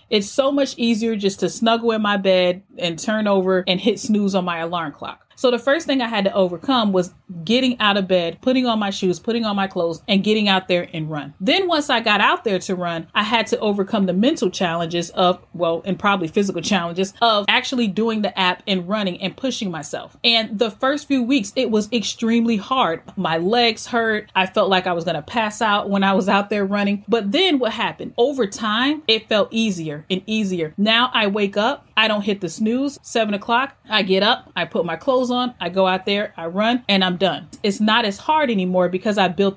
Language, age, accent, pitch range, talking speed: English, 30-49, American, 185-230 Hz, 230 wpm